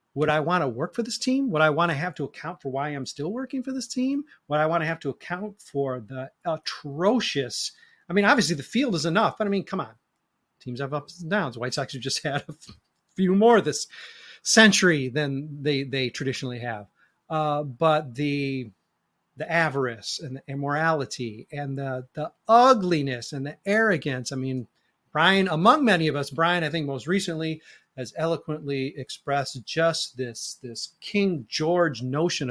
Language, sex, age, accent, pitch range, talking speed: English, male, 30-49, American, 140-190 Hz, 185 wpm